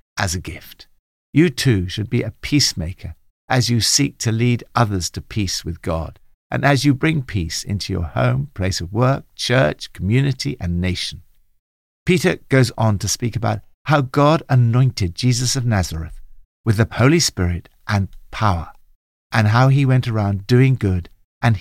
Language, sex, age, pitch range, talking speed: English, male, 60-79, 95-135 Hz, 165 wpm